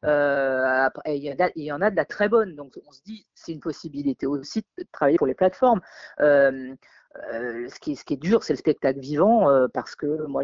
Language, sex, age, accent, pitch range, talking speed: French, female, 40-59, French, 135-200 Hz, 240 wpm